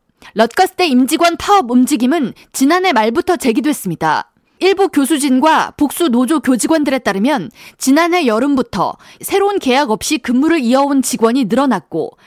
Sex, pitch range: female, 245-335 Hz